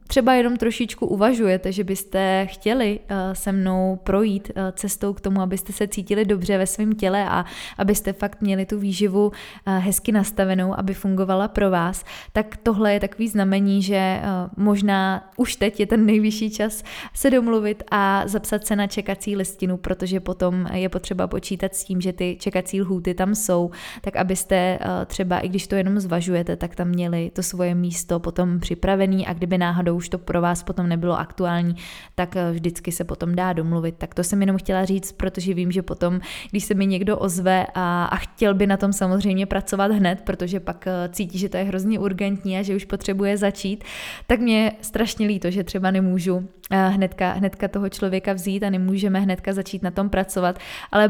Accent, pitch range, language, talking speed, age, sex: native, 185-205 Hz, Czech, 180 wpm, 20-39, female